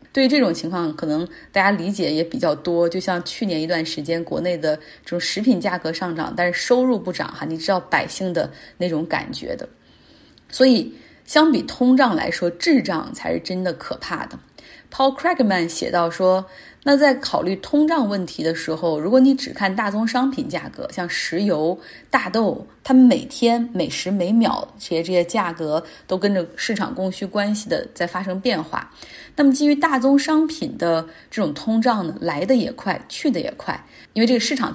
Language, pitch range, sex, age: Chinese, 175-255 Hz, female, 20-39